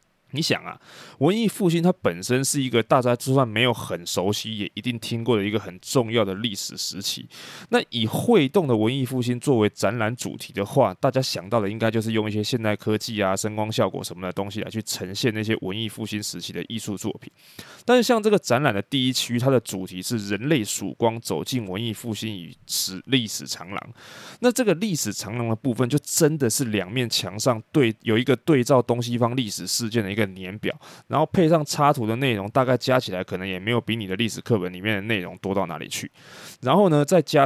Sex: male